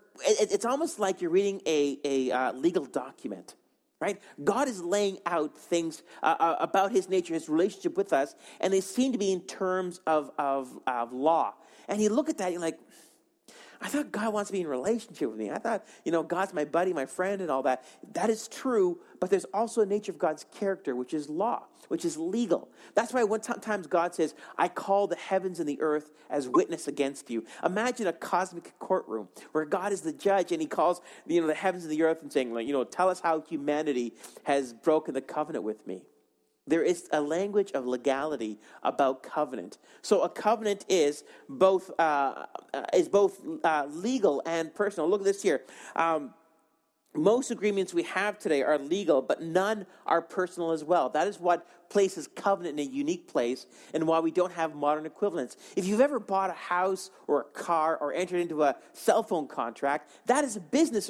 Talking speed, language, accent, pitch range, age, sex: 200 wpm, English, American, 160-215 Hz, 40-59, male